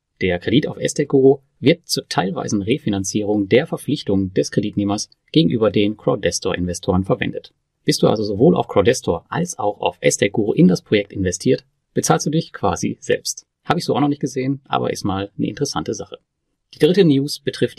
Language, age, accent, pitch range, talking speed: German, 30-49, German, 100-140 Hz, 175 wpm